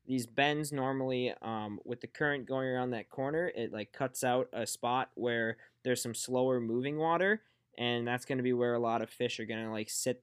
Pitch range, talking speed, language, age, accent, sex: 110-135 Hz, 225 wpm, English, 20-39, American, male